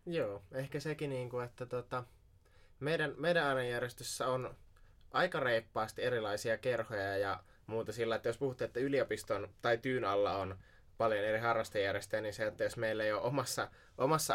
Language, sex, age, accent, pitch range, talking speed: Finnish, male, 20-39, native, 100-120 Hz, 145 wpm